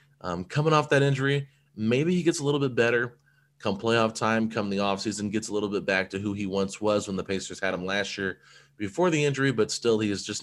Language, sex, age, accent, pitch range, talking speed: English, male, 20-39, American, 95-120 Hz, 245 wpm